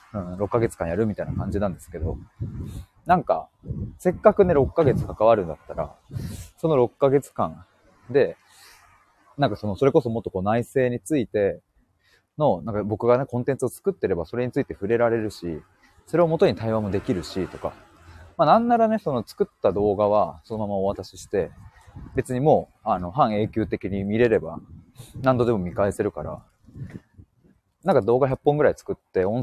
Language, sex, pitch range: Japanese, male, 95-130 Hz